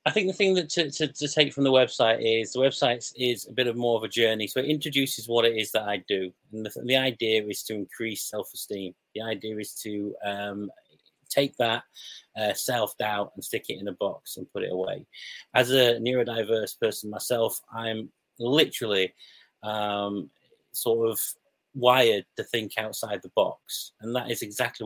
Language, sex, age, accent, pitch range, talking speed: English, male, 30-49, British, 105-125 Hz, 190 wpm